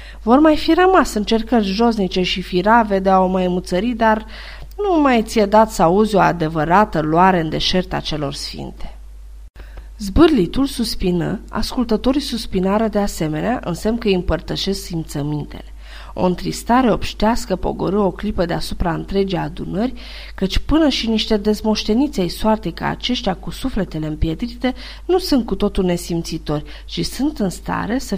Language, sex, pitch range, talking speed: Romanian, female, 170-230 Hz, 150 wpm